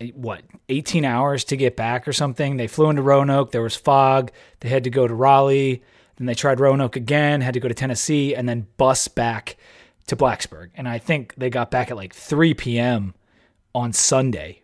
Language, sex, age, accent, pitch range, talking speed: English, male, 30-49, American, 120-140 Hz, 200 wpm